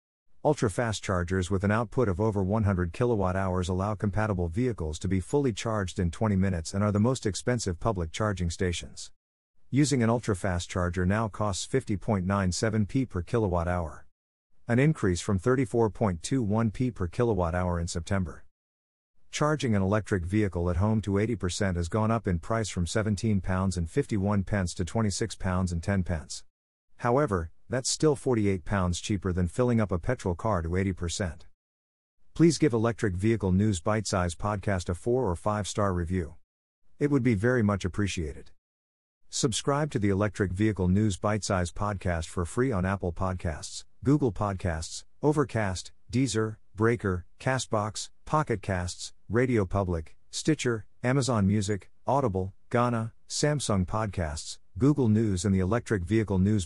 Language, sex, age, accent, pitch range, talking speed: English, male, 50-69, American, 90-110 Hz, 140 wpm